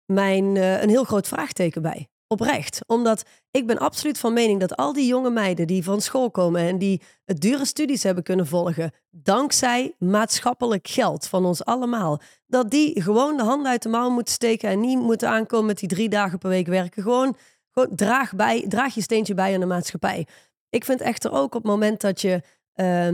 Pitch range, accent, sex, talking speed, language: 185-245 Hz, Dutch, female, 205 wpm, Dutch